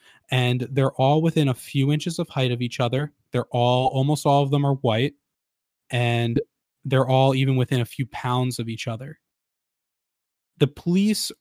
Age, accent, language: 20-39, American, English